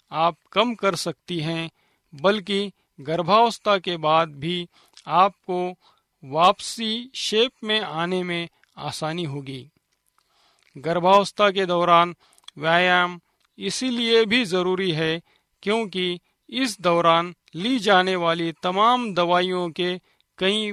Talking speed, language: 105 wpm, Hindi